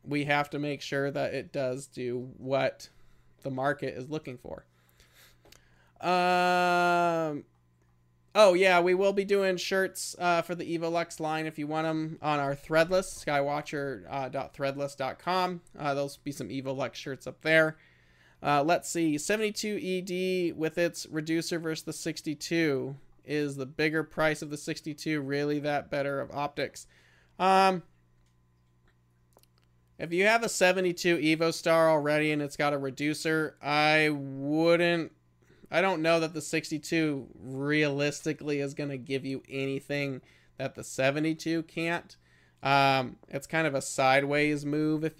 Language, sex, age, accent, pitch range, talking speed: English, male, 30-49, American, 135-160 Hz, 145 wpm